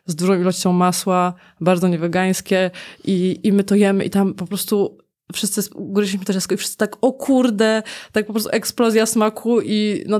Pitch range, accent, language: 180-200 Hz, native, Polish